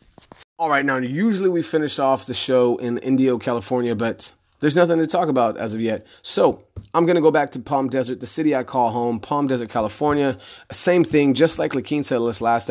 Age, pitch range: 30-49, 115-135 Hz